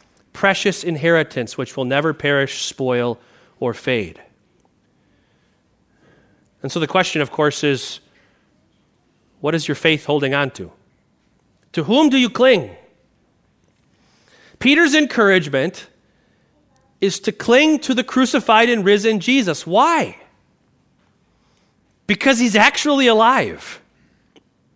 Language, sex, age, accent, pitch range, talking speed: English, male, 40-59, American, 140-215 Hz, 105 wpm